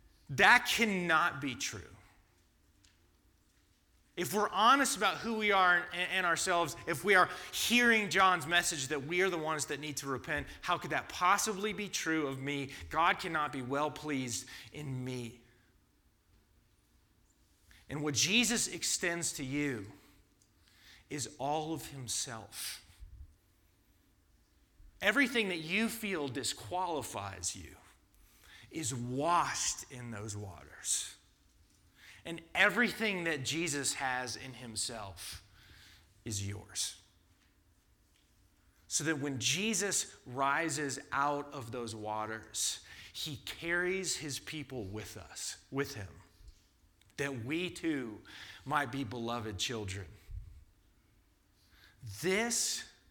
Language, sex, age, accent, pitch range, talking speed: English, male, 30-49, American, 95-160 Hz, 110 wpm